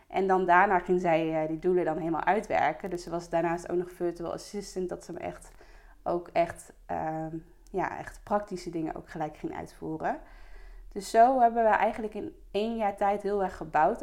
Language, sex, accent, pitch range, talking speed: Dutch, female, Dutch, 175-200 Hz, 195 wpm